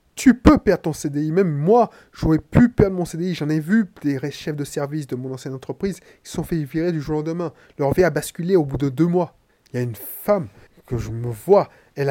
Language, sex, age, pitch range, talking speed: French, male, 20-39, 140-195 Hz, 255 wpm